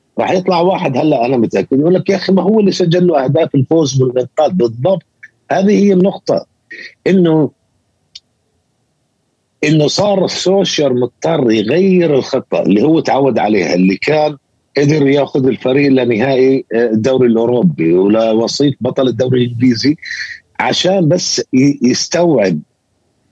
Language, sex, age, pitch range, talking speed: Arabic, male, 50-69, 125-175 Hz, 125 wpm